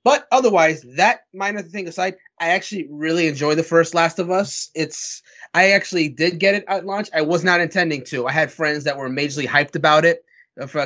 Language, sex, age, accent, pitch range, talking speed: English, male, 20-39, American, 135-165 Hz, 210 wpm